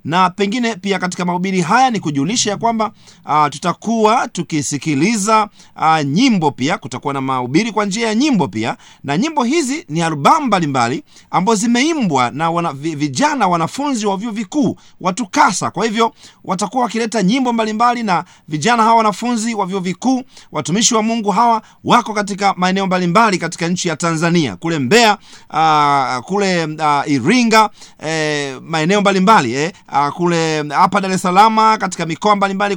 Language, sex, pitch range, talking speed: Swahili, male, 160-220 Hz, 150 wpm